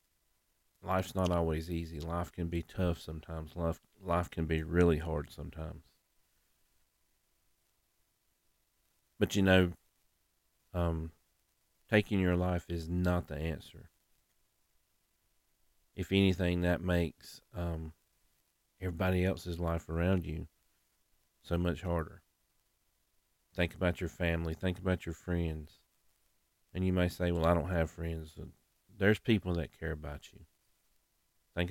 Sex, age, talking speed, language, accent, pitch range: male, 40-59, 120 wpm, English, American, 80-95 Hz